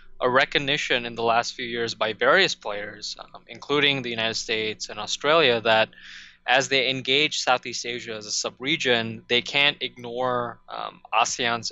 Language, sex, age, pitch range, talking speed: English, male, 20-39, 115-125 Hz, 160 wpm